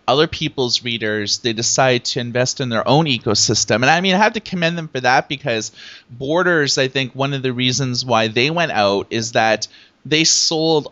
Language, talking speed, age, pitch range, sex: English, 205 wpm, 30-49, 115-135 Hz, male